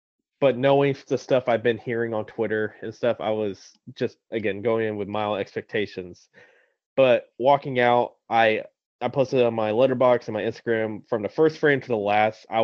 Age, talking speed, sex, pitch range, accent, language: 20-39, 190 wpm, male, 100-120 Hz, American, English